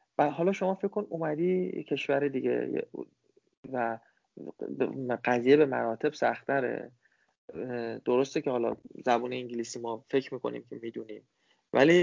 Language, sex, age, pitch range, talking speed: Persian, male, 30-49, 130-165 Hz, 115 wpm